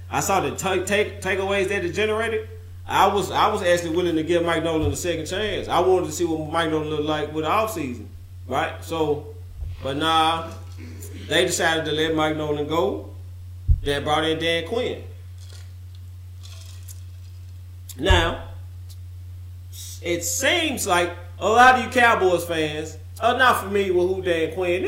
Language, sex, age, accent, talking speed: English, male, 30-49, American, 160 wpm